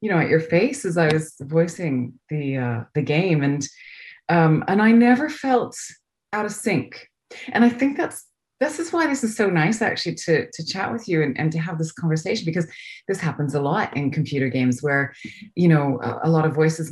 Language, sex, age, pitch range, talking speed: English, female, 30-49, 150-205 Hz, 215 wpm